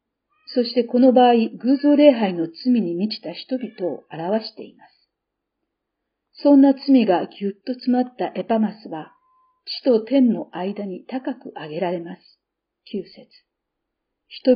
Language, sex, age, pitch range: Japanese, female, 50-69, 185-250 Hz